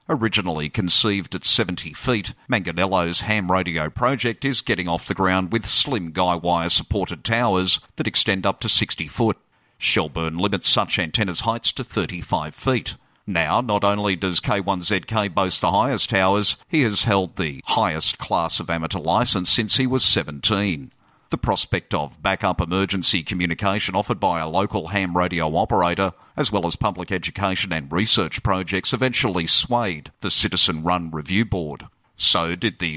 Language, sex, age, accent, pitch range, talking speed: English, male, 50-69, Australian, 90-115 Hz, 155 wpm